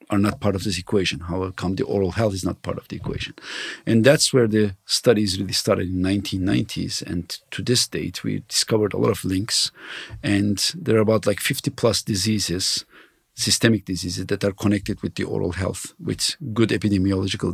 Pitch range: 95-115 Hz